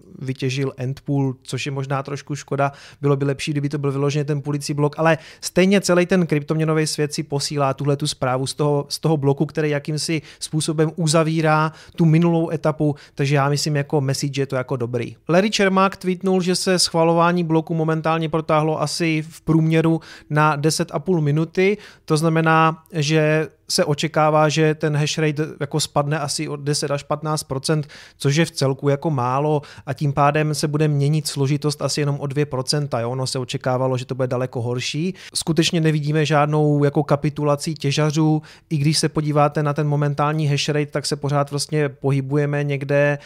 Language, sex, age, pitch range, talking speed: Czech, male, 30-49, 140-155 Hz, 175 wpm